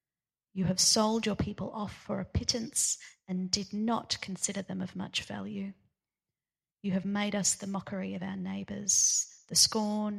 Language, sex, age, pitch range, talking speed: English, female, 30-49, 180-205 Hz, 165 wpm